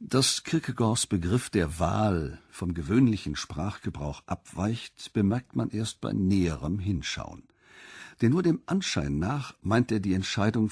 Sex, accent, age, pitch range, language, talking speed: male, German, 50-69, 95-120 Hz, German, 135 wpm